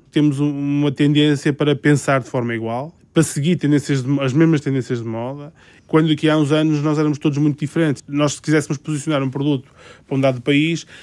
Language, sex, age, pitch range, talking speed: Portuguese, male, 20-39, 135-160 Hz, 190 wpm